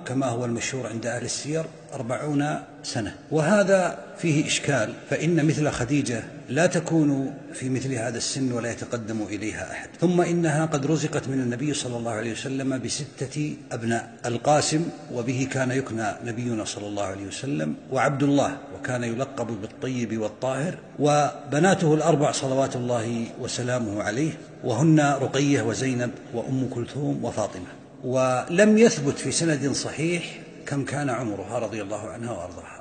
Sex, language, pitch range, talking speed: male, Arabic, 120-150 Hz, 135 wpm